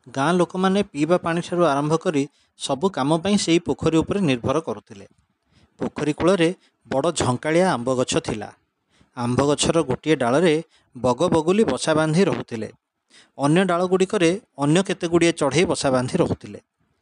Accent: Indian